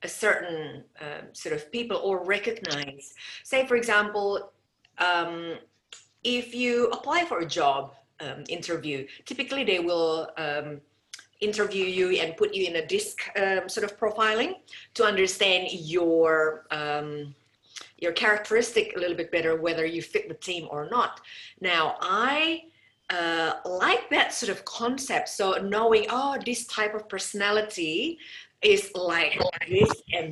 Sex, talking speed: female, 145 wpm